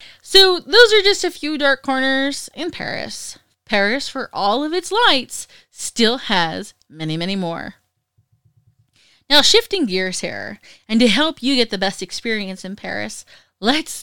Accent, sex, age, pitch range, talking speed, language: American, female, 30-49, 185-270 Hz, 155 wpm, English